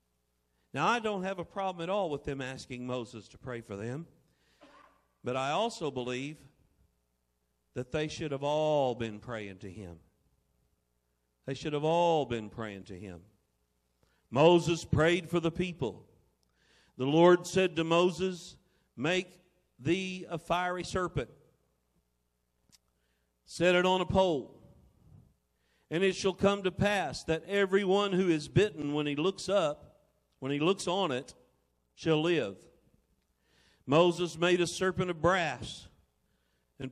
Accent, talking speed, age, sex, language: American, 140 wpm, 50-69, male, English